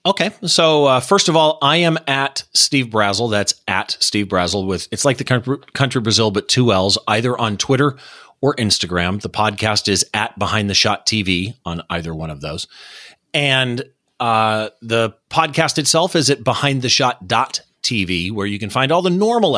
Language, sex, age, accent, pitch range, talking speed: English, male, 30-49, American, 110-170 Hz, 185 wpm